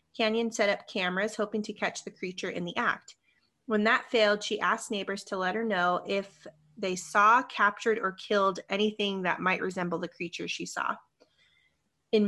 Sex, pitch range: female, 190-225 Hz